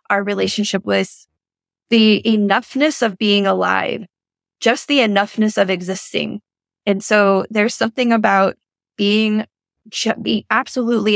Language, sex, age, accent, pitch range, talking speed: English, female, 20-39, American, 195-225 Hz, 115 wpm